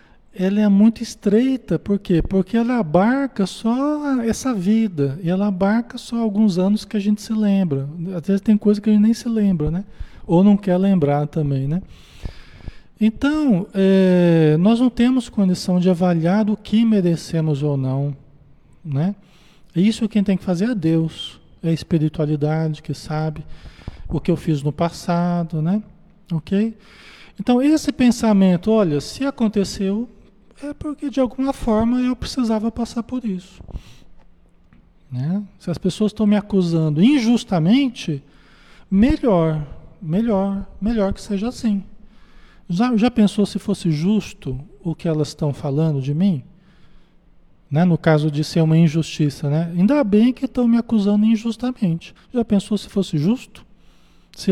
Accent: Brazilian